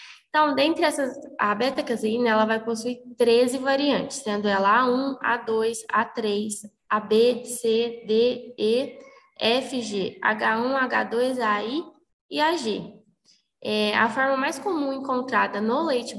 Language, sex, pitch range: Portuguese, female, 220-275 Hz